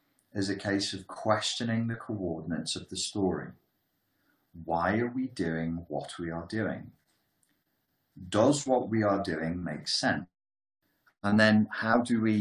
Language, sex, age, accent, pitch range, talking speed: English, male, 30-49, British, 80-95 Hz, 145 wpm